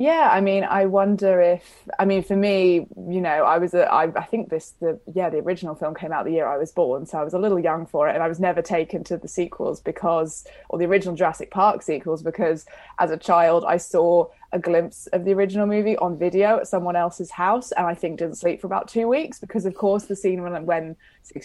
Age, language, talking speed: 20-39, English, 250 wpm